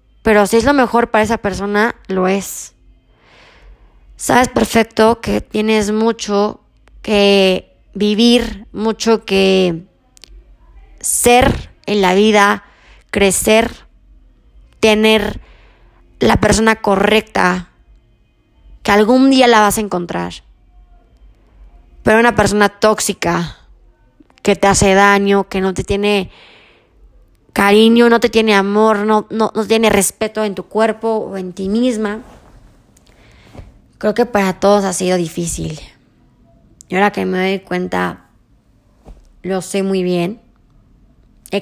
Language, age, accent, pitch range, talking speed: Spanish, 20-39, Mexican, 185-220 Hz, 120 wpm